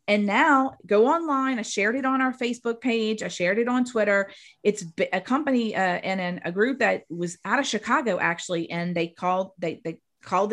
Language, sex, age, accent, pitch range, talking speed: English, female, 30-49, American, 185-240 Hz, 195 wpm